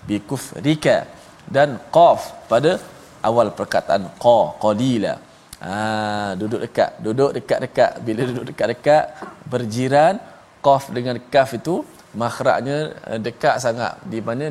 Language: Malayalam